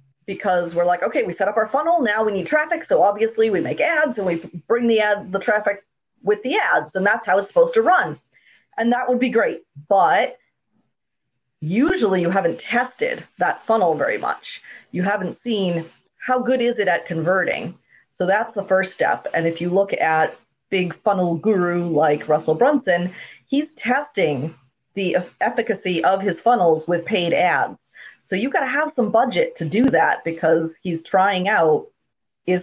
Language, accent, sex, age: English, American, female, 30-49